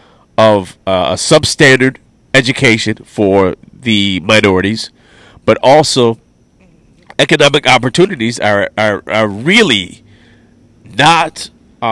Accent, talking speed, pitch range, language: American, 85 wpm, 100-125 Hz, English